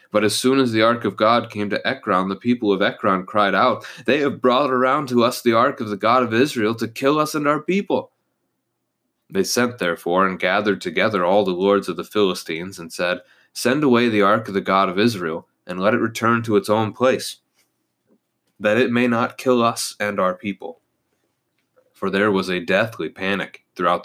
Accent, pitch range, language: American, 90-115 Hz, English